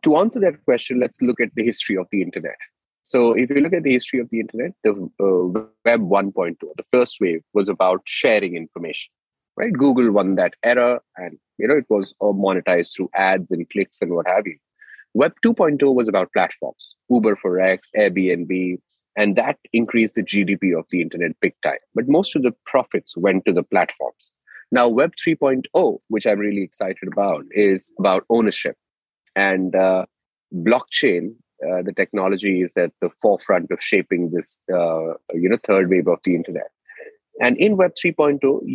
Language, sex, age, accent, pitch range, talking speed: English, male, 30-49, Indian, 95-140 Hz, 180 wpm